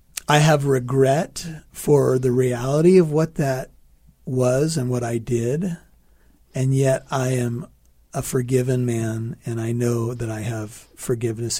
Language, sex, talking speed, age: English, male, 145 wpm, 40-59